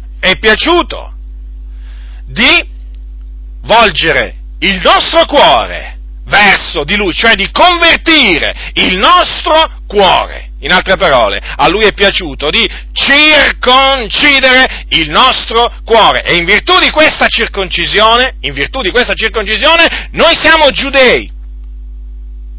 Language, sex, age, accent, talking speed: Italian, male, 40-59, native, 110 wpm